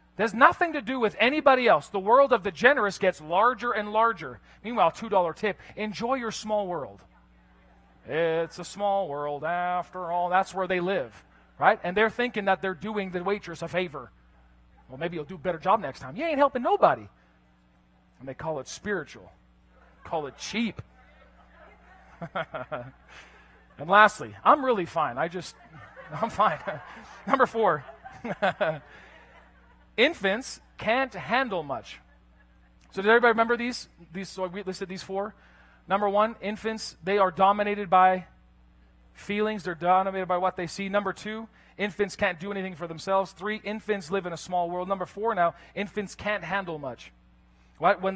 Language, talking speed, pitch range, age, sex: English, 160 wpm, 145-210 Hz, 40-59, male